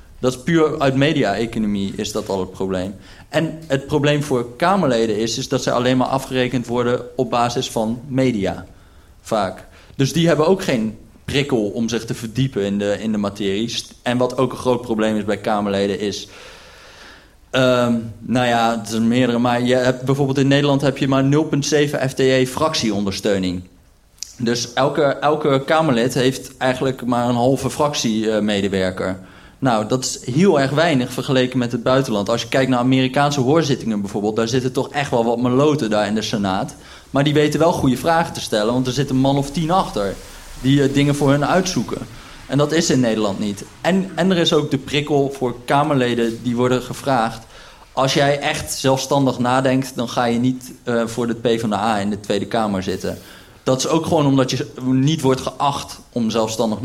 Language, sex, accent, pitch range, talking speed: Dutch, male, Dutch, 110-140 Hz, 190 wpm